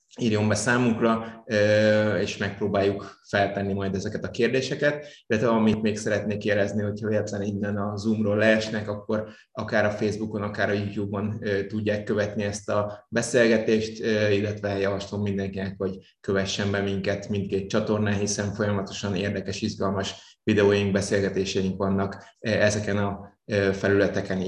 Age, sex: 20-39, male